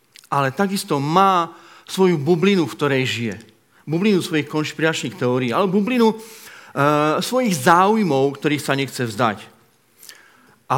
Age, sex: 40-59, male